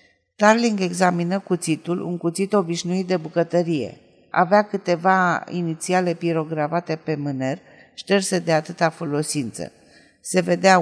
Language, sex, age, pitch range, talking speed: Romanian, female, 50-69, 160-200 Hz, 110 wpm